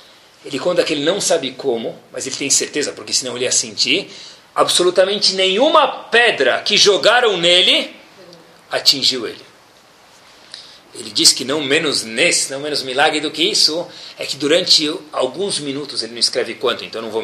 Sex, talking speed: male, 165 wpm